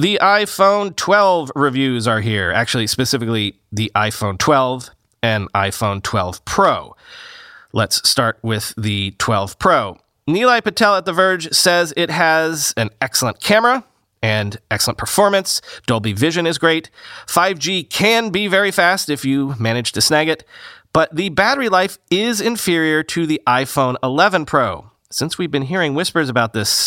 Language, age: English, 30-49